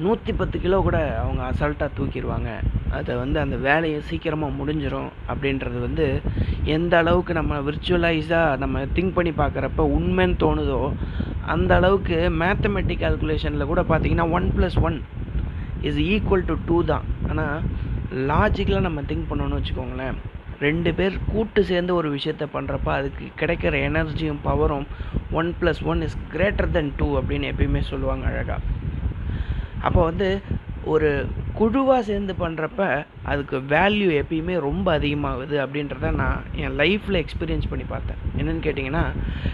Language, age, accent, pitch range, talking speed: Tamil, 30-49, native, 120-175 Hz, 125 wpm